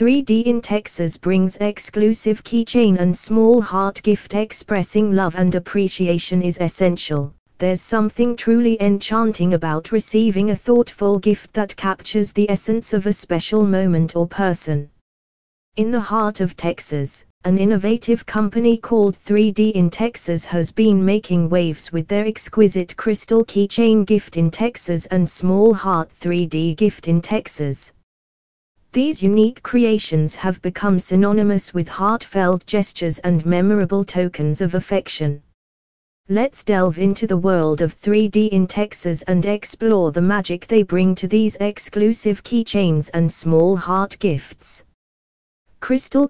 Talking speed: 135 wpm